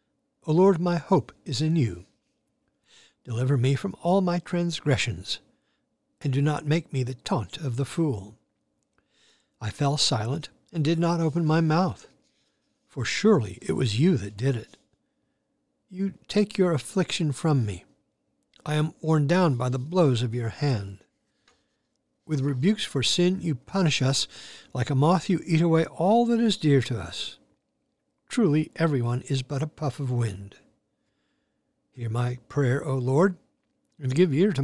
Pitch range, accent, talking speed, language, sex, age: 125-170 Hz, American, 160 wpm, English, male, 60-79